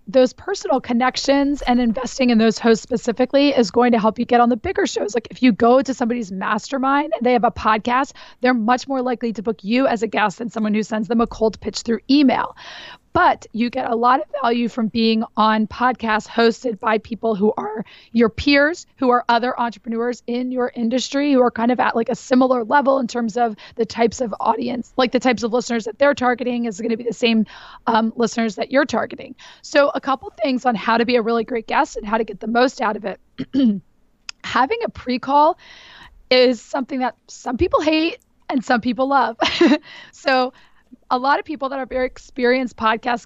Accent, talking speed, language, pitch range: American, 215 wpm, English, 230-265 Hz